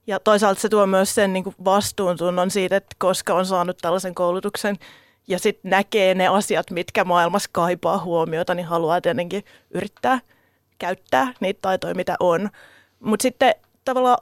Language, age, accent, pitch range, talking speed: Finnish, 30-49, native, 185-230 Hz, 155 wpm